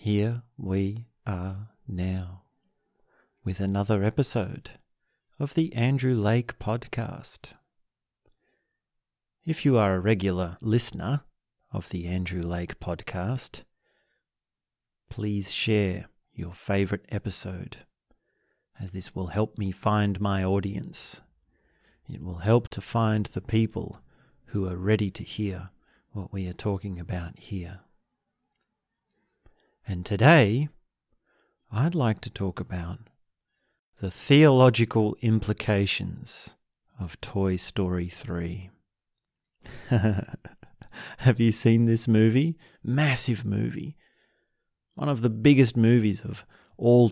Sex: male